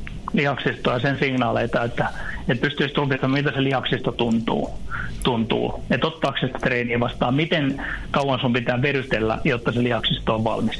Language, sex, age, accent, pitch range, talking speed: Finnish, male, 60-79, native, 115-140 Hz, 150 wpm